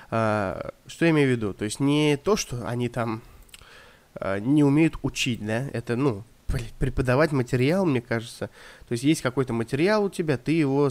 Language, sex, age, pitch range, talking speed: Russian, male, 20-39, 120-150 Hz, 185 wpm